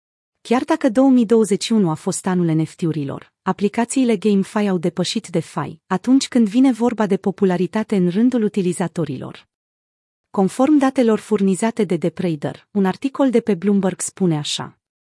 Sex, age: female, 30-49